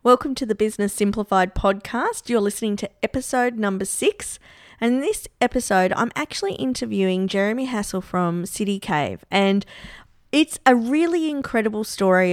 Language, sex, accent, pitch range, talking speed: English, female, Australian, 195-245 Hz, 145 wpm